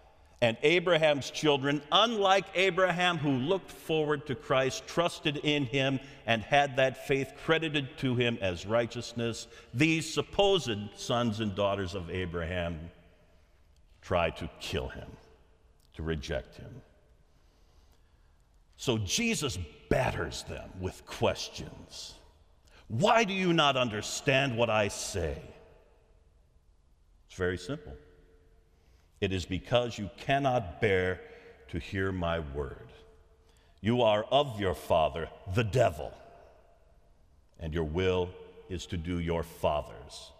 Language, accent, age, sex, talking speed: English, American, 50-69, male, 115 wpm